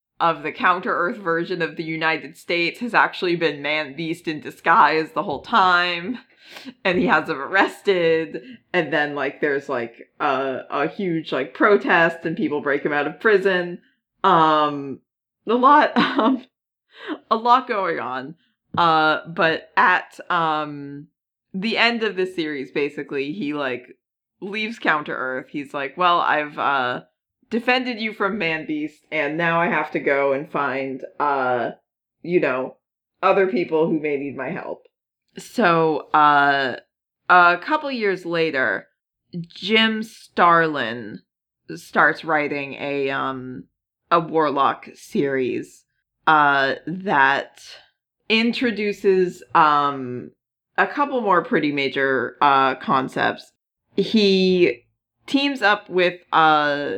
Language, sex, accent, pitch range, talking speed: English, female, American, 145-195 Hz, 125 wpm